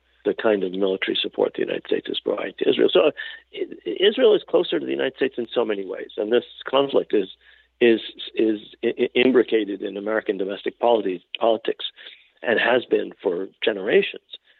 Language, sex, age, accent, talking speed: English, male, 50-69, American, 175 wpm